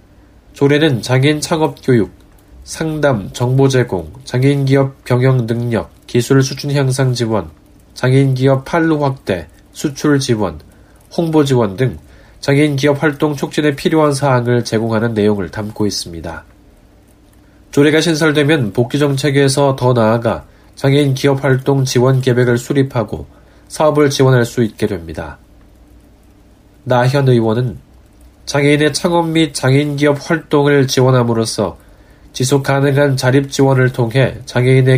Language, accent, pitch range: Korean, native, 105-140 Hz